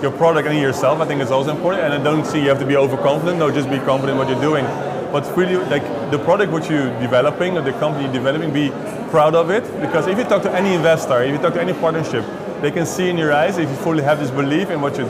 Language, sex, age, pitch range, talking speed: Turkish, male, 20-39, 140-175 Hz, 280 wpm